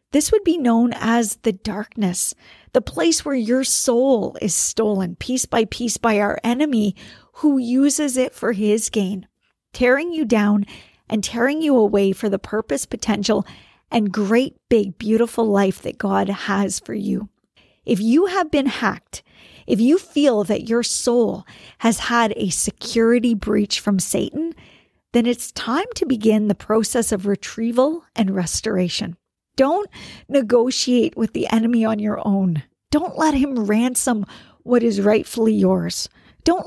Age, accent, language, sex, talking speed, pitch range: 40-59, American, English, female, 150 wpm, 210-265 Hz